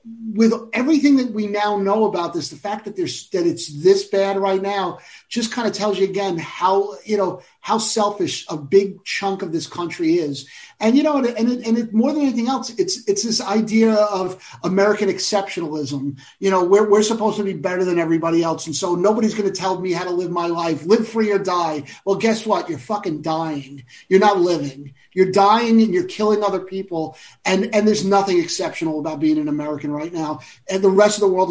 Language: English